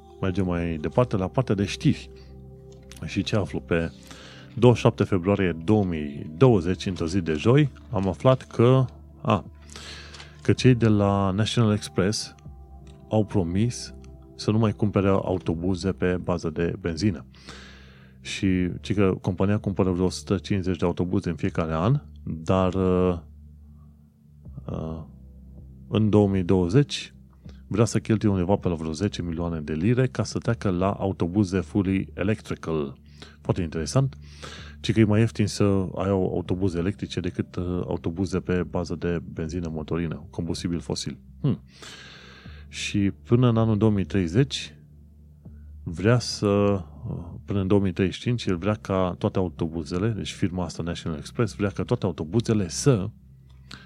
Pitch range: 75-100 Hz